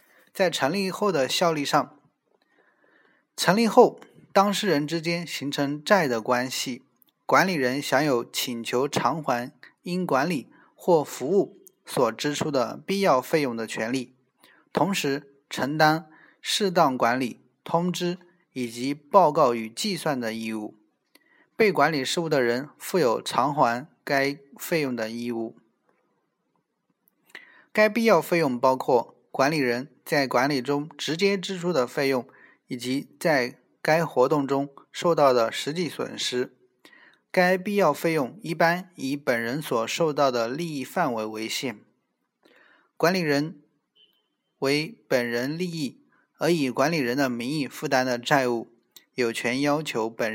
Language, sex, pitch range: Chinese, male, 125-170 Hz